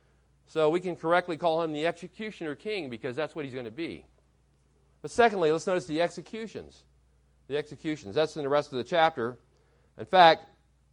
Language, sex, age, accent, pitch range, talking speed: English, male, 40-59, American, 130-170 Hz, 180 wpm